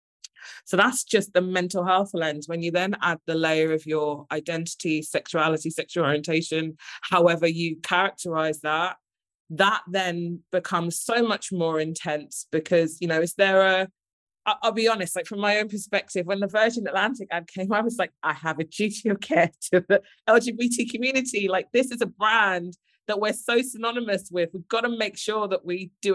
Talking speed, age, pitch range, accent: 190 wpm, 20-39, 165-200 Hz, British